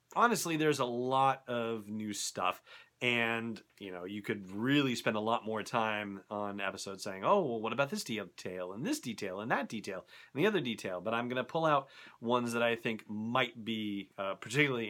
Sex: male